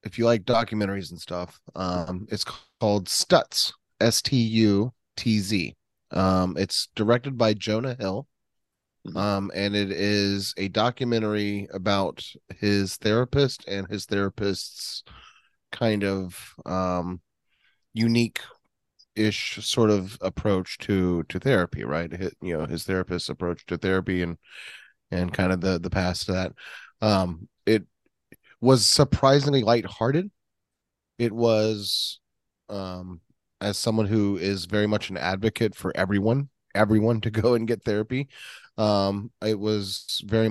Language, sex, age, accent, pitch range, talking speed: English, male, 30-49, American, 95-115 Hz, 130 wpm